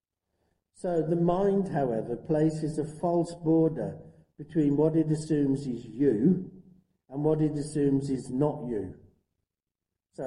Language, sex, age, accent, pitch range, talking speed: English, male, 50-69, British, 115-160 Hz, 130 wpm